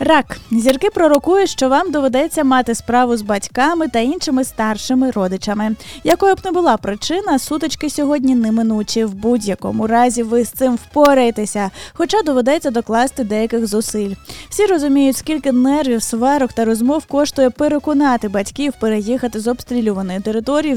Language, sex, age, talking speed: Ukrainian, female, 20-39, 140 wpm